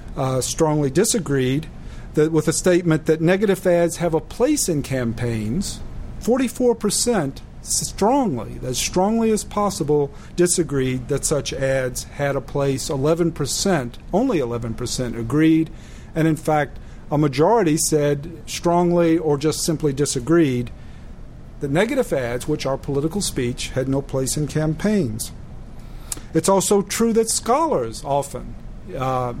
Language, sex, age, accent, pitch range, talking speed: English, male, 50-69, American, 135-175 Hz, 125 wpm